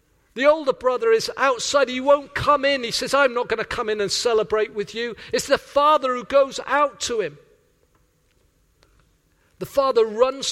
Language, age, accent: English, 50-69, British